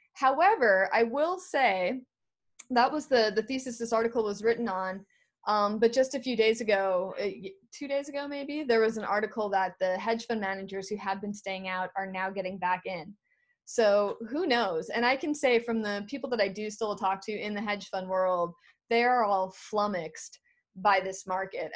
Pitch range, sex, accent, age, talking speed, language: 185-235 Hz, female, American, 20-39, 200 wpm, English